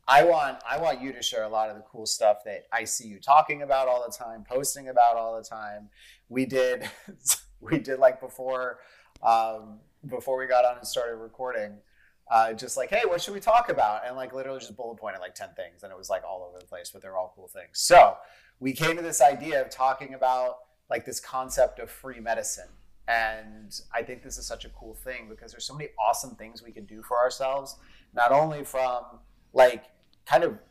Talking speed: 220 wpm